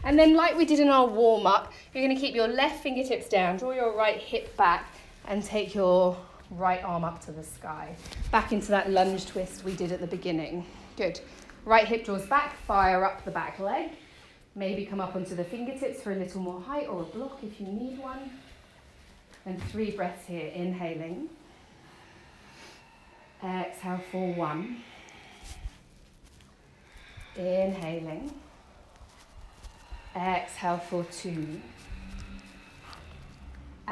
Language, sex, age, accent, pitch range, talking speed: English, female, 30-49, British, 170-230 Hz, 140 wpm